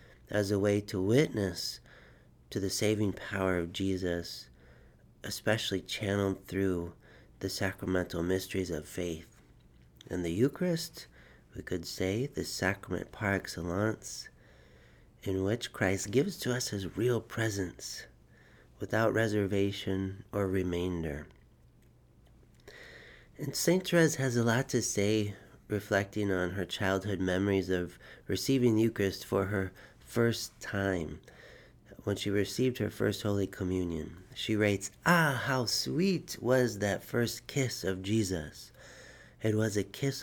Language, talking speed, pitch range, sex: English, 125 wpm, 95-115 Hz, male